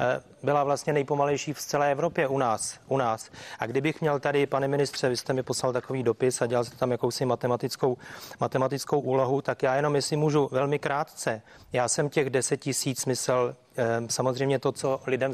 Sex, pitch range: male, 130-155 Hz